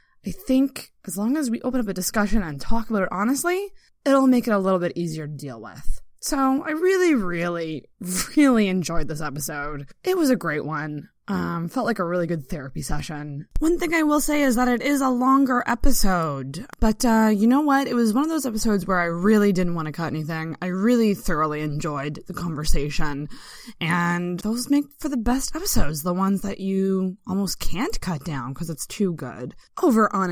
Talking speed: 205 wpm